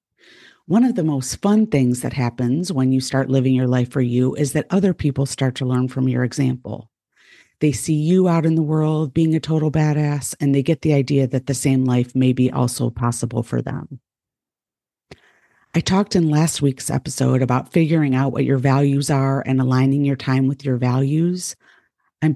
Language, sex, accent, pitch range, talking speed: English, female, American, 130-155 Hz, 195 wpm